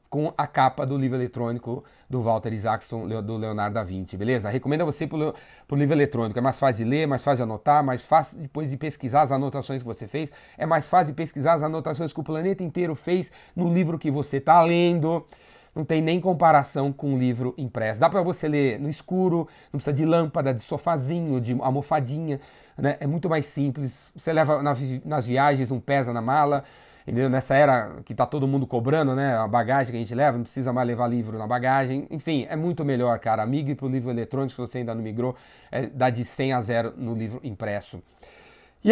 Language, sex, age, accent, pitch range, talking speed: Portuguese, male, 30-49, Brazilian, 130-160 Hz, 215 wpm